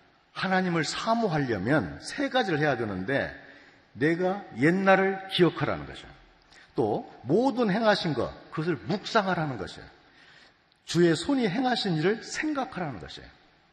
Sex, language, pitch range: male, Korean, 125-180 Hz